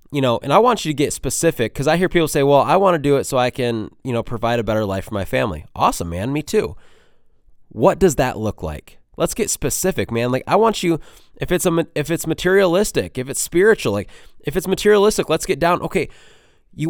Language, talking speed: English, 240 wpm